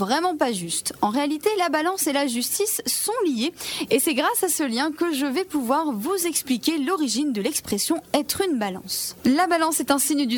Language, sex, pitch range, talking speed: French, female, 245-330 Hz, 220 wpm